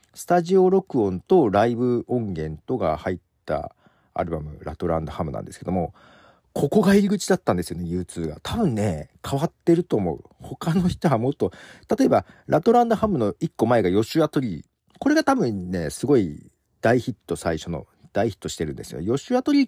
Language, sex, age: Japanese, male, 40-59